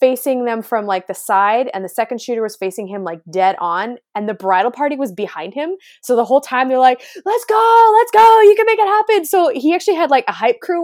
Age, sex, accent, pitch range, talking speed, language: 20-39, female, American, 190-290 Hz, 255 wpm, English